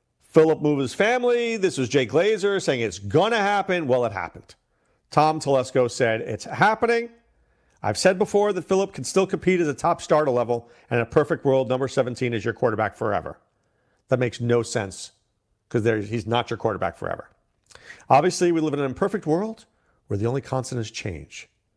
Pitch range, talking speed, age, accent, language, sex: 105-150 Hz, 185 wpm, 50-69, American, English, male